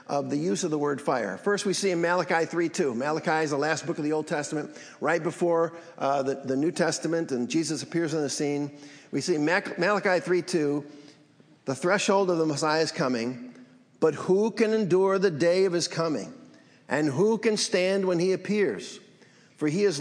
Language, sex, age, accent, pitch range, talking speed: English, male, 50-69, American, 155-190 Hz, 195 wpm